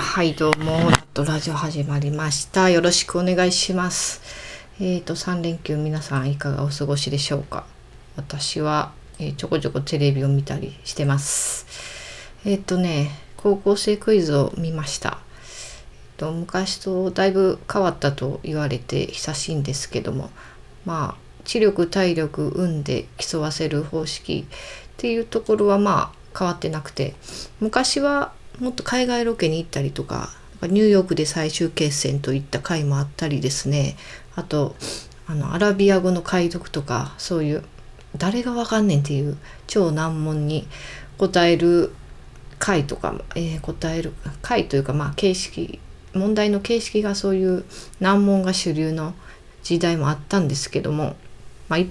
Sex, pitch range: female, 145-185 Hz